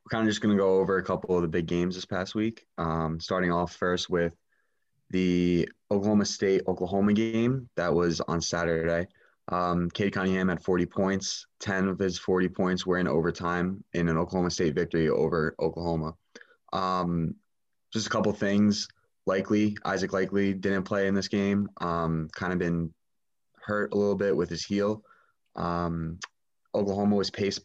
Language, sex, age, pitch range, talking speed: English, male, 20-39, 85-100 Hz, 170 wpm